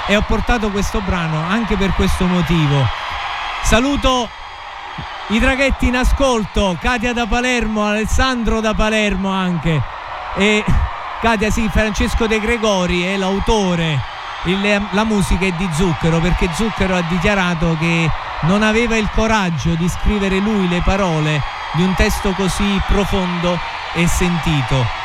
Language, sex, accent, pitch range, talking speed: Italian, male, native, 180-225 Hz, 135 wpm